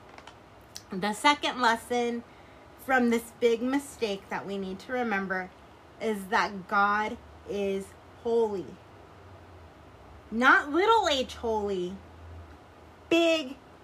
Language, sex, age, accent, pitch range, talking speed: English, female, 20-39, American, 200-285 Hz, 95 wpm